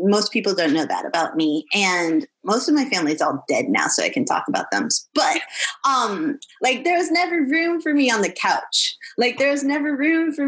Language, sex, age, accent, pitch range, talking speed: English, female, 20-39, American, 195-285 Hz, 230 wpm